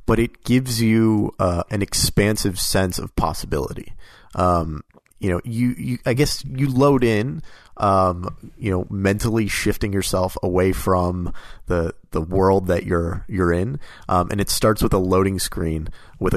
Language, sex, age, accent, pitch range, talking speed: English, male, 30-49, American, 85-105 Hz, 160 wpm